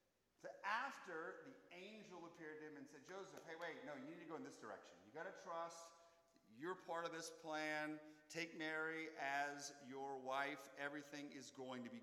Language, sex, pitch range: English, male, 165-235 Hz